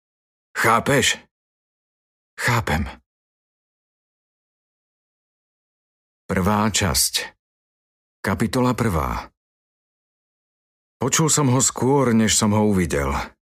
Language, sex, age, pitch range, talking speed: Slovak, male, 50-69, 80-110 Hz, 60 wpm